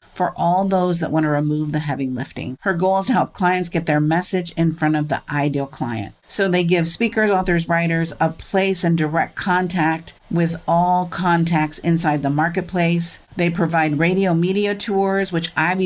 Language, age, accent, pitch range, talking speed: English, 50-69, American, 165-200 Hz, 185 wpm